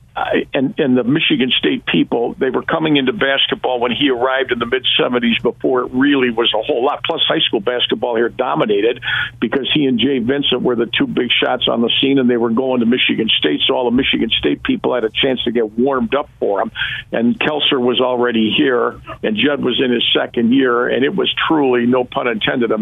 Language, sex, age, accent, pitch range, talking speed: English, male, 50-69, American, 120-135 Hz, 230 wpm